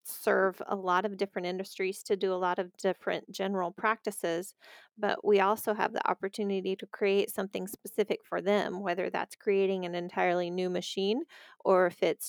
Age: 30-49